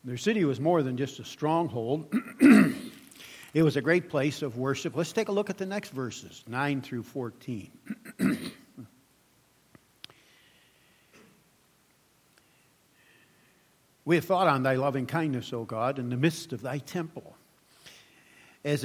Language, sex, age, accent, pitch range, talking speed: English, male, 60-79, American, 130-175 Hz, 135 wpm